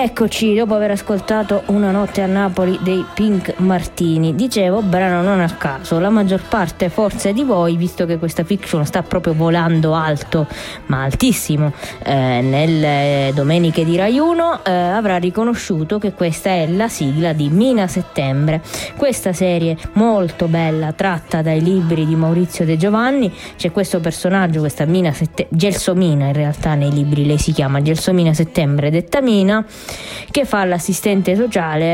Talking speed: 155 wpm